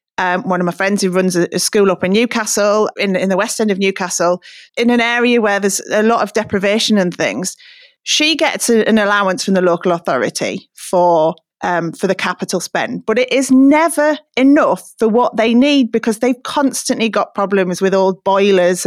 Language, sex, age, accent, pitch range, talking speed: English, female, 30-49, British, 185-255 Hz, 195 wpm